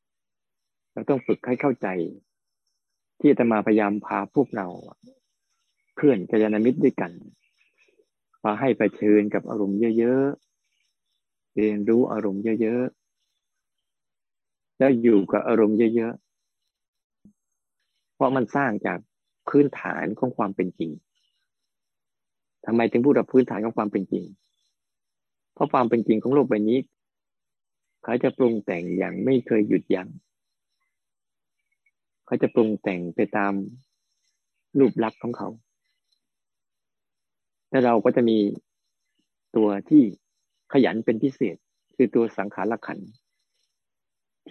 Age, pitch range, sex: 20-39, 105-130 Hz, male